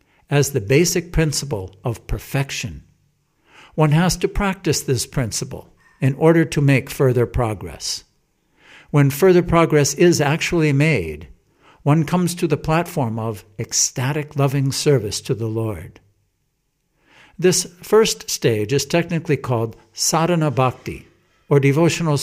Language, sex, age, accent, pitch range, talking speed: English, male, 60-79, American, 115-155 Hz, 125 wpm